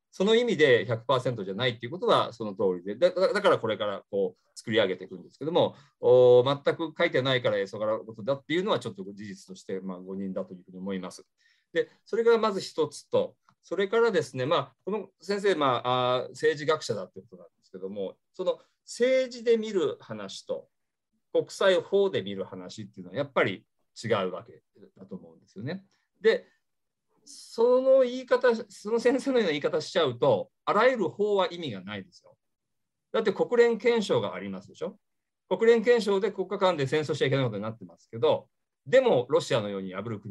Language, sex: Japanese, male